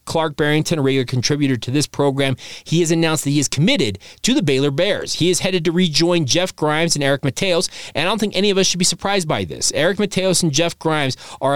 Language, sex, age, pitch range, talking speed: English, male, 30-49, 135-170 Hz, 245 wpm